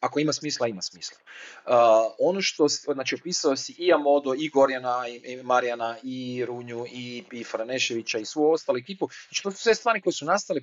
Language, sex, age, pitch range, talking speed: Croatian, male, 40-59, 130-180 Hz, 200 wpm